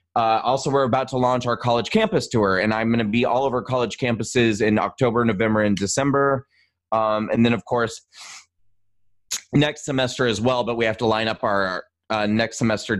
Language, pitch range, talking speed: English, 110-135 Hz, 200 wpm